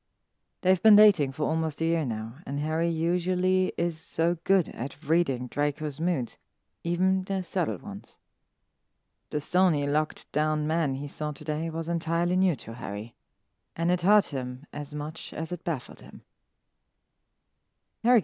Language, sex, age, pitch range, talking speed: German, female, 40-59, 140-180 Hz, 150 wpm